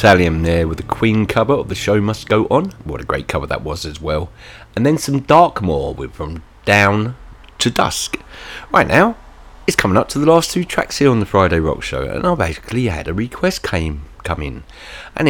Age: 30-49